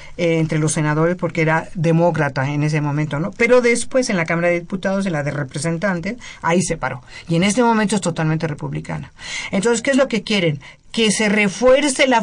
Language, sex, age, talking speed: Spanish, female, 50-69, 200 wpm